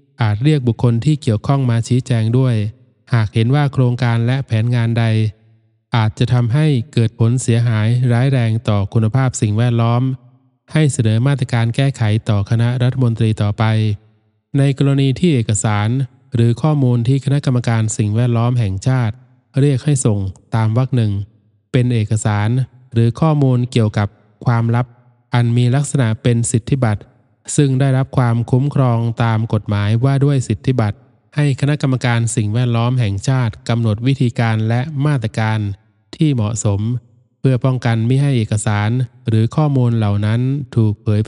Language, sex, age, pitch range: Thai, male, 20-39, 110-130 Hz